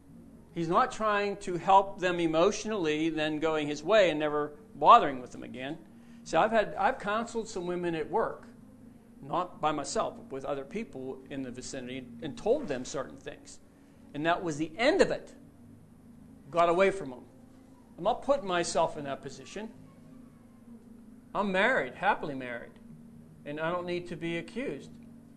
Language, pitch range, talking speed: English, 155-235 Hz, 165 wpm